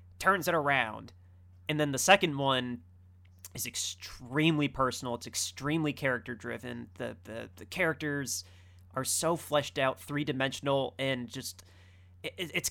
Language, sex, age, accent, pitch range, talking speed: English, male, 30-49, American, 115-150 Hz, 135 wpm